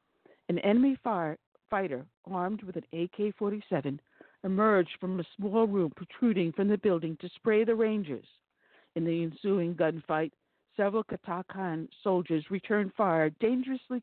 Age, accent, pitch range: 60-79, American, 160-205 Hz